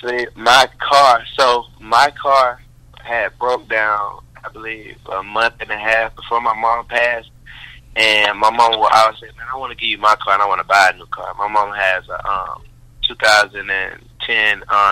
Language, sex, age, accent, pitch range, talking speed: English, male, 20-39, American, 110-125 Hz, 195 wpm